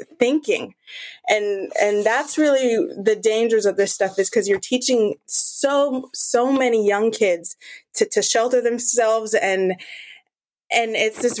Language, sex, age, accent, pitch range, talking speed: English, female, 20-39, American, 195-230 Hz, 140 wpm